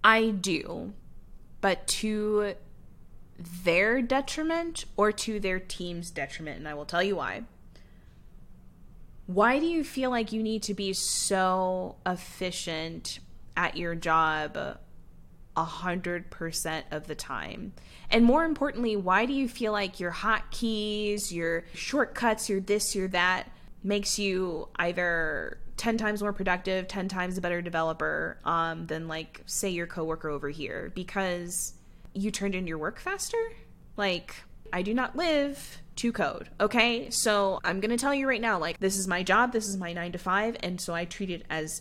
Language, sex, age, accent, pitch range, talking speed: English, female, 20-39, American, 170-220 Hz, 160 wpm